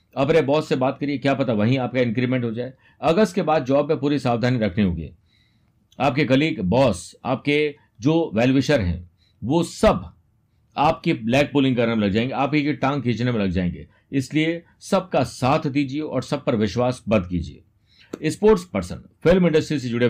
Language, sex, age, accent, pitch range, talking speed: Hindi, male, 50-69, native, 100-150 Hz, 180 wpm